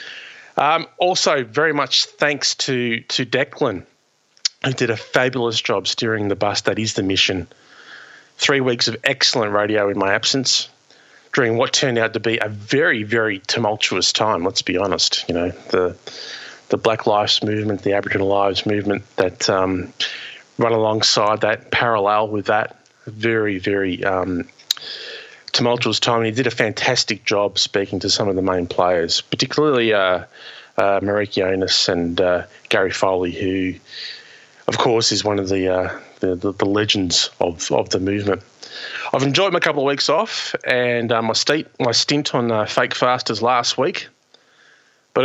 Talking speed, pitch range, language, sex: 165 wpm, 100-130 Hz, English, male